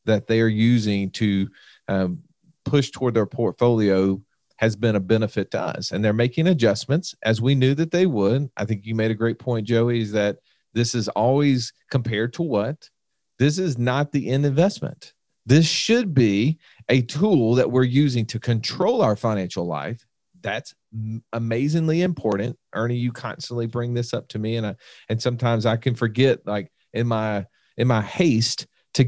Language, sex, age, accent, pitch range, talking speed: English, male, 40-59, American, 110-140 Hz, 180 wpm